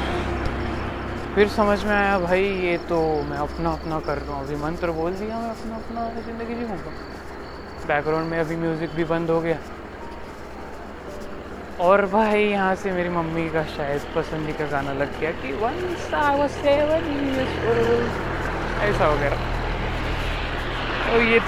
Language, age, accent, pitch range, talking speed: Marathi, 20-39, native, 160-205 Hz, 65 wpm